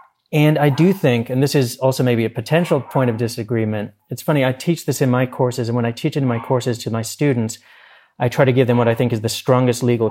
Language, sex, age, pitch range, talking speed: English, male, 40-59, 115-135 Hz, 265 wpm